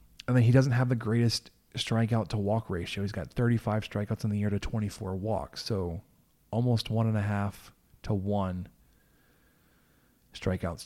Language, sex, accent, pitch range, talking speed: English, male, American, 100-120 Hz, 165 wpm